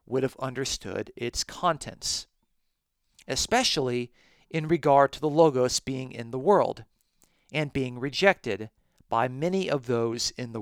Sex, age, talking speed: male, 40-59, 135 wpm